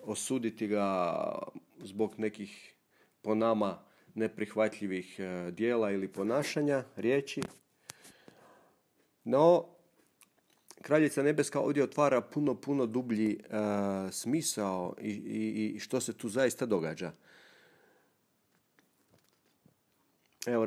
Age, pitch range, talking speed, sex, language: 40-59, 105-130 Hz, 85 wpm, male, Croatian